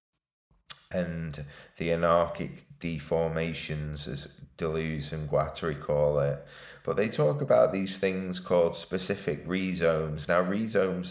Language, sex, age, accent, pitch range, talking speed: English, male, 20-39, British, 75-90 Hz, 115 wpm